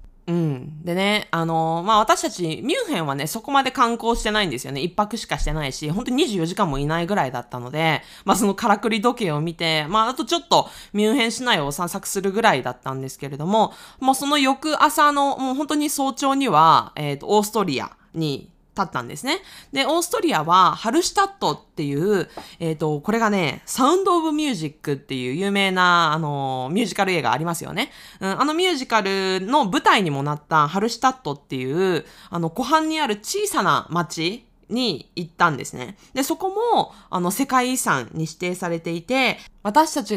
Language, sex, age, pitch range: Japanese, female, 20-39, 160-265 Hz